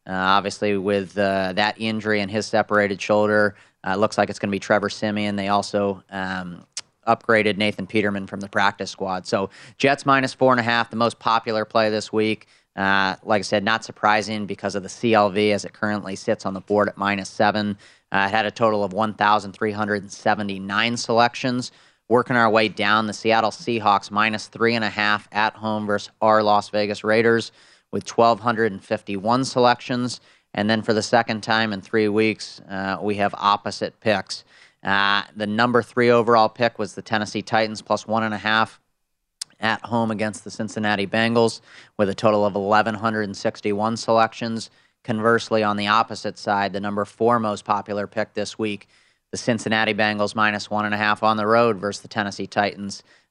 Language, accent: English, American